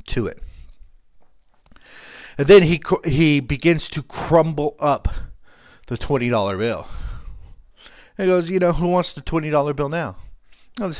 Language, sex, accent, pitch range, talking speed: English, male, American, 100-150 Hz, 145 wpm